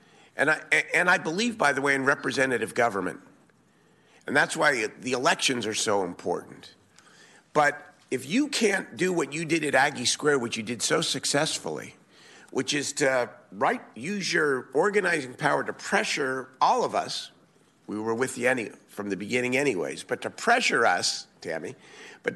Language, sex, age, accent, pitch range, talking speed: English, male, 50-69, American, 130-215 Hz, 170 wpm